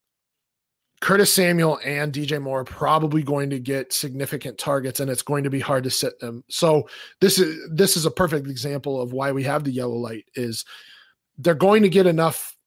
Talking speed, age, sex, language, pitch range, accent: 200 wpm, 30-49, male, English, 130-160 Hz, American